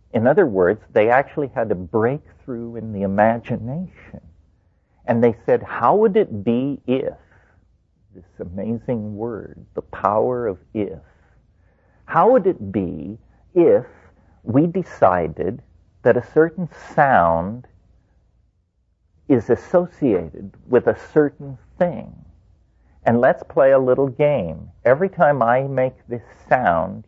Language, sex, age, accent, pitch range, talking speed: English, male, 50-69, American, 90-125 Hz, 120 wpm